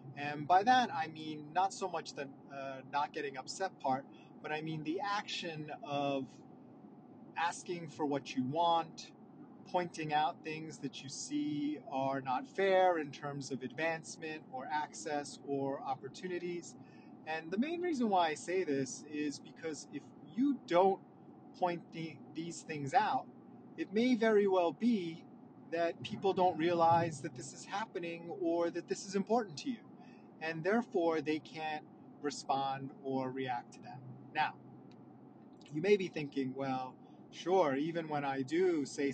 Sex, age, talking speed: male, 30-49, 155 wpm